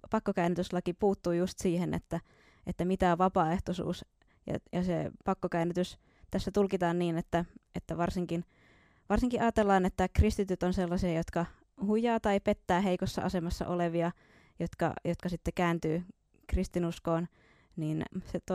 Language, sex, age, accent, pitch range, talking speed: Finnish, female, 20-39, native, 170-190 Hz, 125 wpm